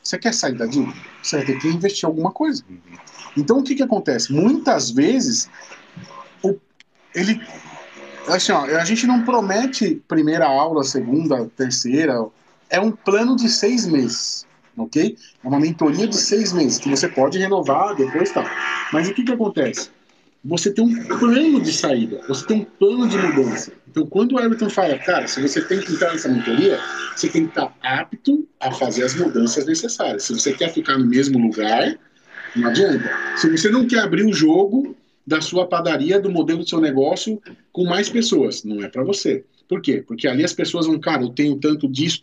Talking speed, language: 185 wpm, Portuguese